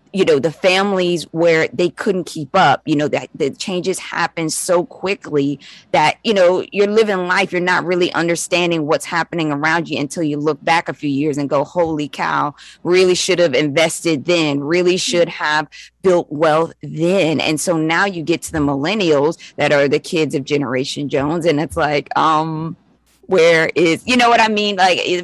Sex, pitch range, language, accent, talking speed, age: female, 150-180 Hz, English, American, 190 wpm, 20-39